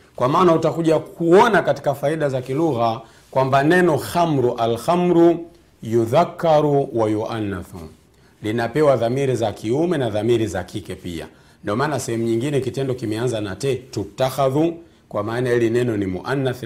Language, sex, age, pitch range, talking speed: Swahili, male, 50-69, 115-160 Hz, 135 wpm